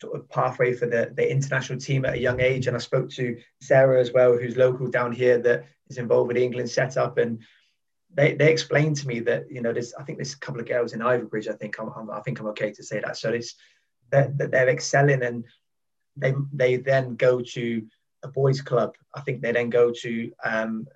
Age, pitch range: 20-39, 120-135 Hz